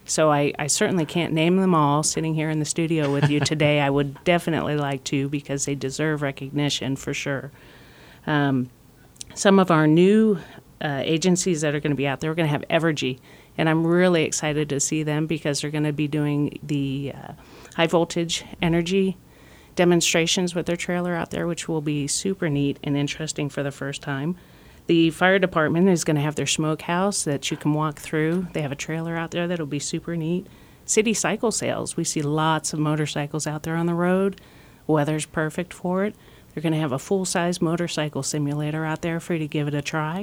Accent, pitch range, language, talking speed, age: American, 145-175 Hz, English, 210 wpm, 40-59